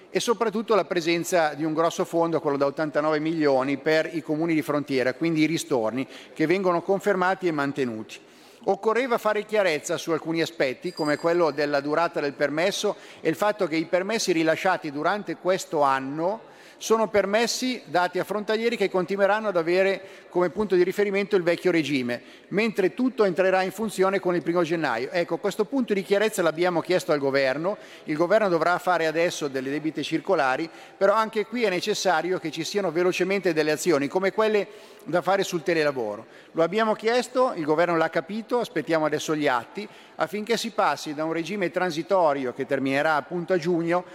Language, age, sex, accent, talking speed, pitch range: Italian, 50-69, male, native, 175 wpm, 155-200 Hz